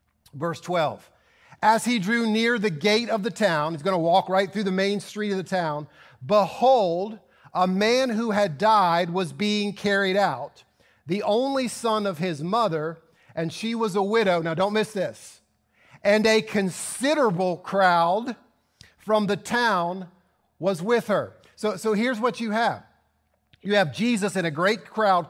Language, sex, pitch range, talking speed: English, male, 165-205 Hz, 170 wpm